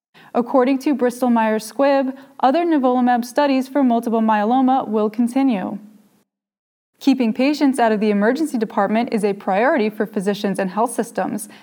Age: 20-39